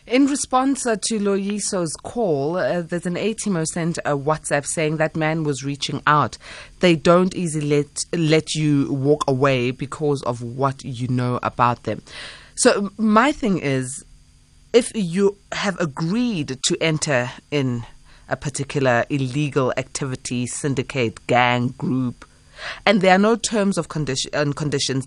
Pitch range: 140-200 Hz